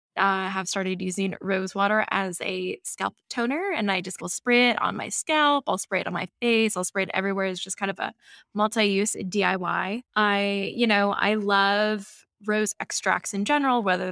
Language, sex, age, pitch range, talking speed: English, female, 20-39, 190-225 Hz, 195 wpm